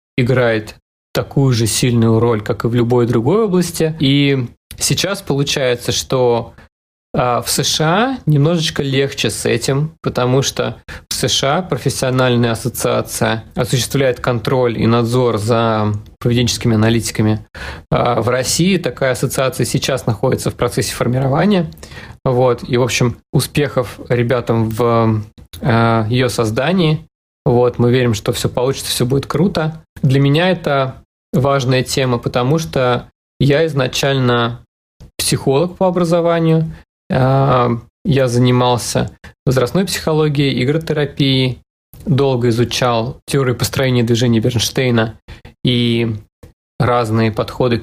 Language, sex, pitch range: Russian, male, 115-140 Hz